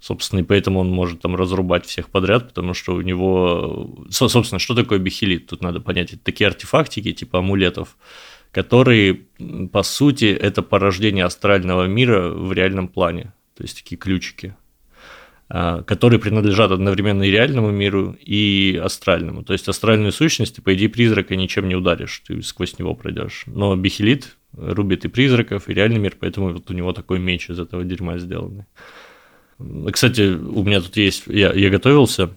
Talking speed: 160 wpm